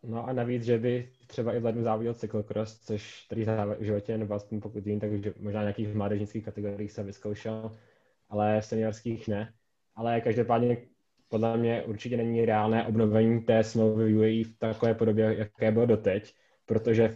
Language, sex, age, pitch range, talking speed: Czech, male, 20-39, 105-115 Hz, 170 wpm